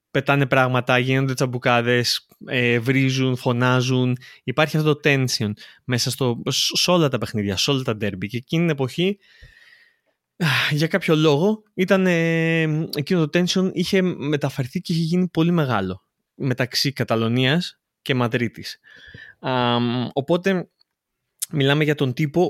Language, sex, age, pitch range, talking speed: Greek, male, 20-39, 120-155 Hz, 125 wpm